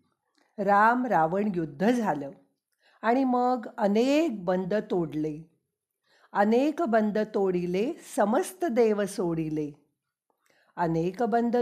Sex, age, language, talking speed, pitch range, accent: female, 50-69, Marathi, 90 wpm, 180-240 Hz, native